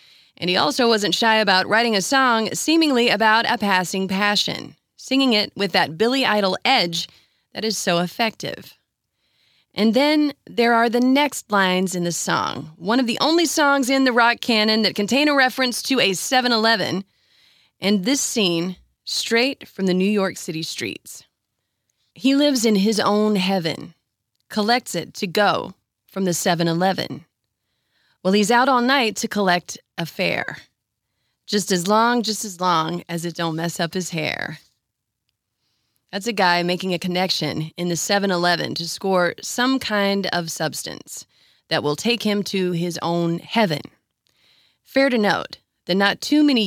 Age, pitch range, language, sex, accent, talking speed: 30-49, 175-230 Hz, English, female, American, 160 wpm